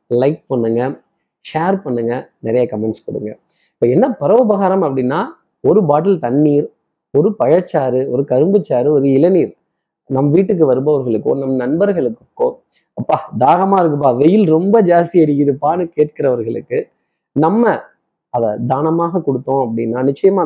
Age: 30-49